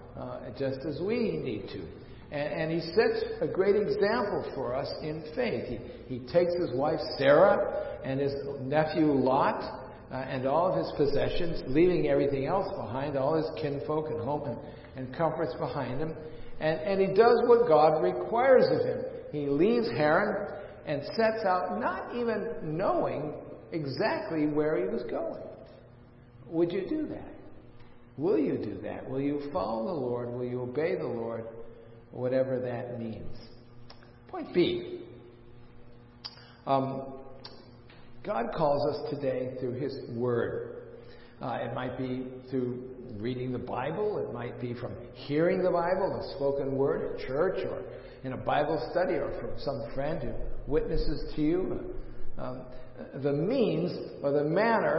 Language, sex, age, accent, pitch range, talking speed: English, male, 50-69, American, 125-165 Hz, 155 wpm